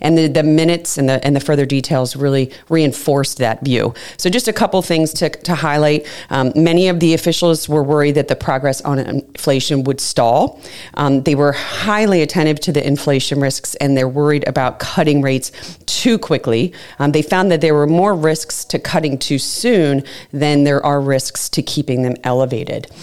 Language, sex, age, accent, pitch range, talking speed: English, female, 40-59, American, 135-165 Hz, 190 wpm